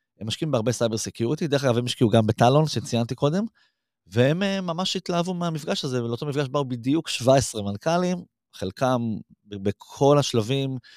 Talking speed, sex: 150 wpm, male